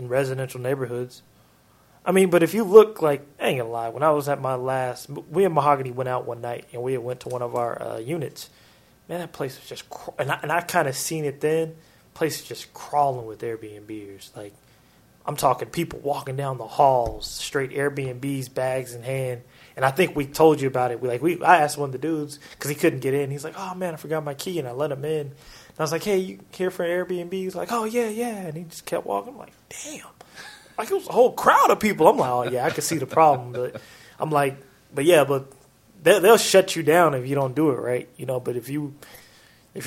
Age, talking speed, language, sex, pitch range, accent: 20-39, 250 wpm, English, male, 130-160 Hz, American